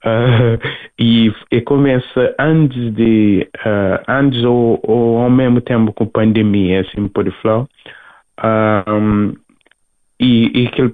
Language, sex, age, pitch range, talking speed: Portuguese, male, 20-39, 105-120 Hz, 130 wpm